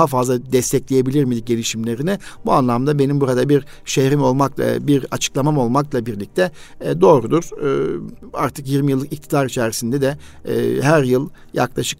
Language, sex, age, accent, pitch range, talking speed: Turkish, male, 50-69, native, 135-155 Hz, 130 wpm